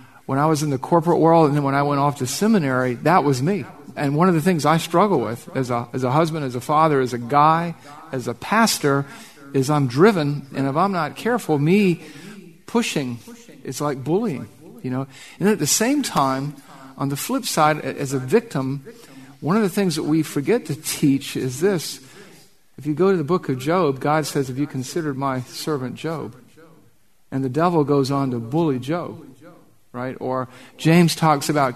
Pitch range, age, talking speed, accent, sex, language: 135-160 Hz, 50-69, 200 wpm, American, male, English